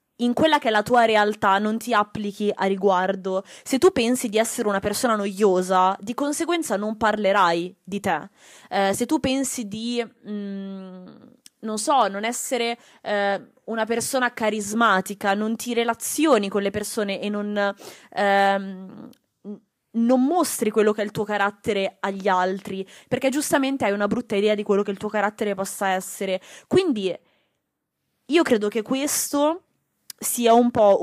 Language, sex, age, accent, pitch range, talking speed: Italian, female, 20-39, native, 195-245 Hz, 155 wpm